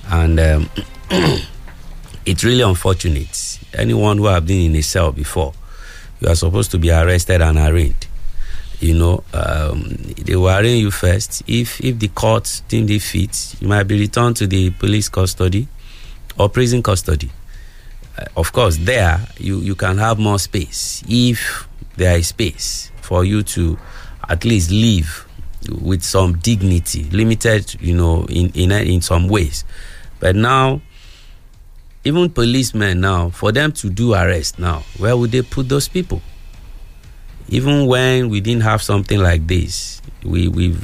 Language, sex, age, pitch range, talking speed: English, male, 50-69, 85-110 Hz, 155 wpm